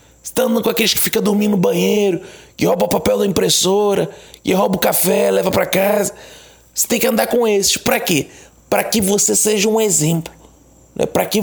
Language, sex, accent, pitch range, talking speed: Portuguese, male, Brazilian, 190-230 Hz, 210 wpm